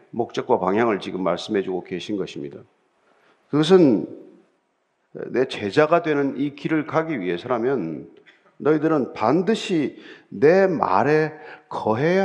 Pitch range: 155-225 Hz